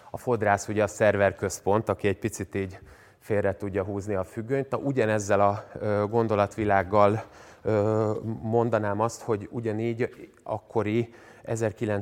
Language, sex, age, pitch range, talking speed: Hungarian, male, 30-49, 100-115 Hz, 110 wpm